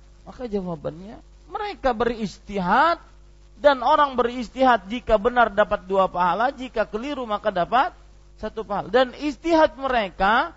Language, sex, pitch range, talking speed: Malay, male, 145-235 Hz, 120 wpm